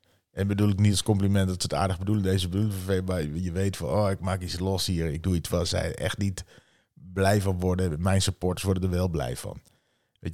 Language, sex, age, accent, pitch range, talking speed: Dutch, male, 40-59, Dutch, 80-95 Hz, 245 wpm